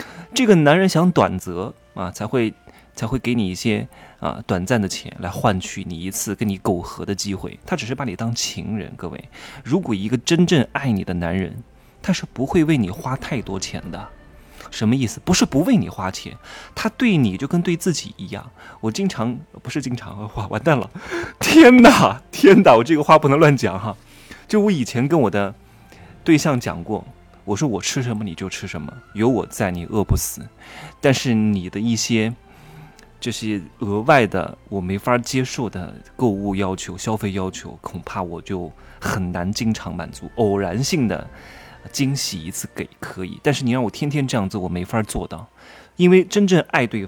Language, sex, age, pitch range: Chinese, male, 20-39, 100-135 Hz